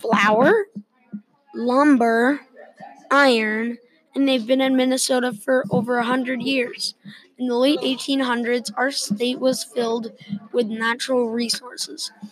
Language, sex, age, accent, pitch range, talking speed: English, female, 20-39, American, 215-250 Hz, 110 wpm